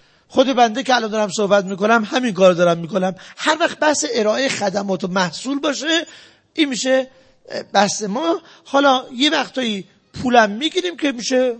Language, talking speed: Persian, 155 wpm